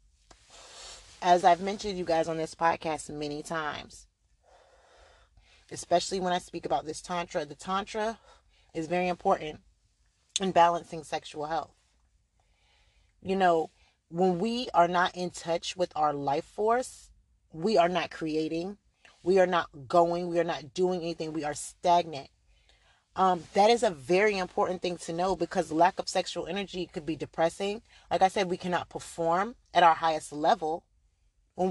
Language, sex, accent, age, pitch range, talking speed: English, female, American, 30-49, 160-195 Hz, 155 wpm